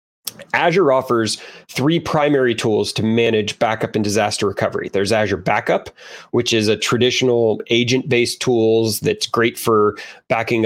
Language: English